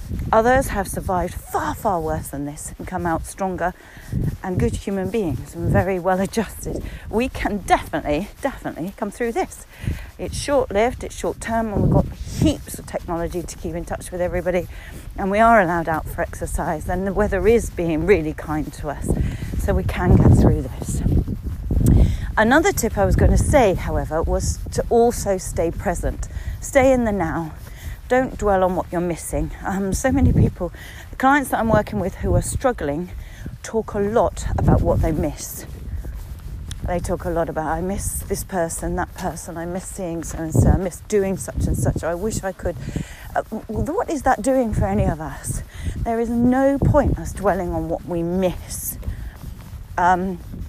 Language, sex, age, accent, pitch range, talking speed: English, female, 40-59, British, 160-220 Hz, 180 wpm